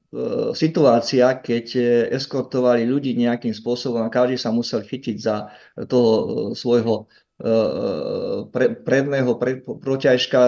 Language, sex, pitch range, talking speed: Czech, male, 110-125 Hz, 105 wpm